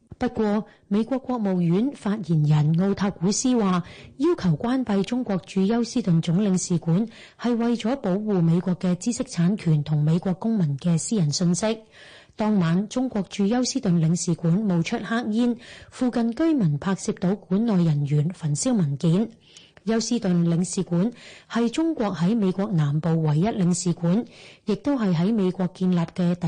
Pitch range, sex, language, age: 175-220 Hz, female, Chinese, 30-49